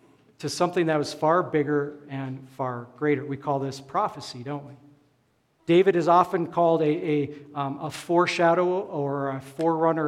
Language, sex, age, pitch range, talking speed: English, male, 50-69, 140-170 Hz, 160 wpm